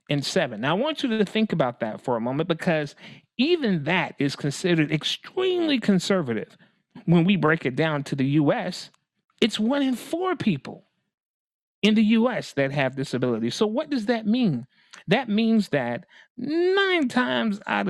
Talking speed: 170 wpm